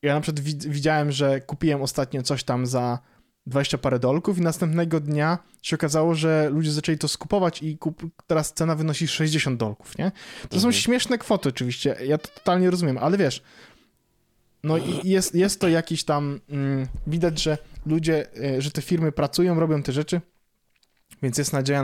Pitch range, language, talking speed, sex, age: 130-160 Hz, Polish, 170 wpm, male, 20-39